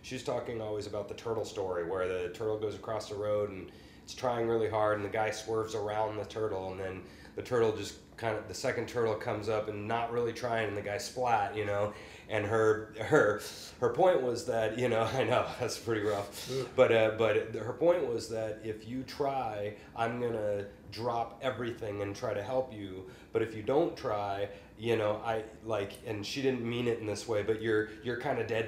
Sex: male